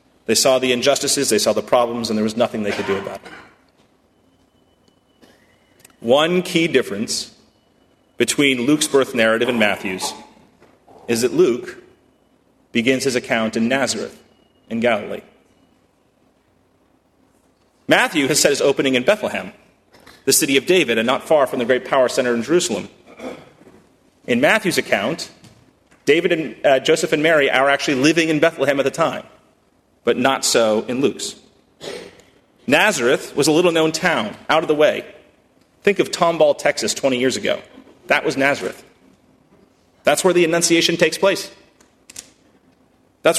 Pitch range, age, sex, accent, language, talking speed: 135-175 Hz, 30-49, male, American, English, 145 wpm